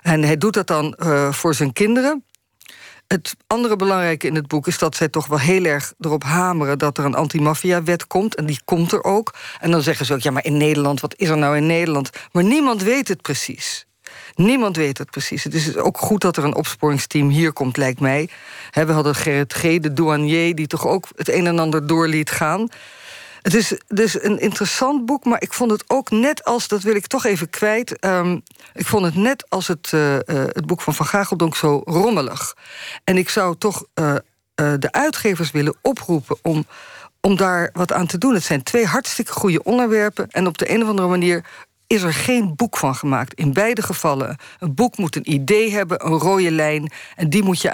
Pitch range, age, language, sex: 150-205 Hz, 50-69, Dutch, female